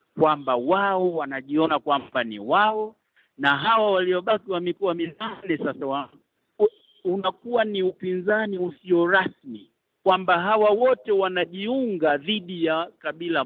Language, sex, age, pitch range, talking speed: Swahili, male, 50-69, 145-205 Hz, 115 wpm